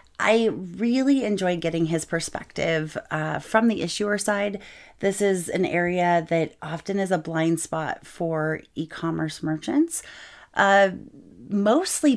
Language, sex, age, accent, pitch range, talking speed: English, female, 30-49, American, 165-210 Hz, 130 wpm